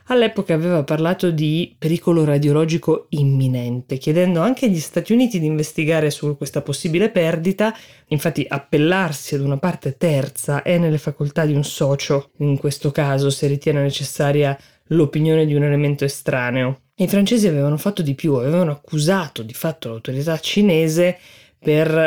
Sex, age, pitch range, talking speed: female, 20-39, 140-170 Hz, 145 wpm